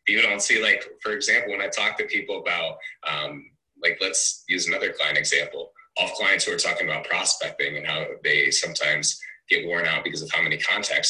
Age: 30-49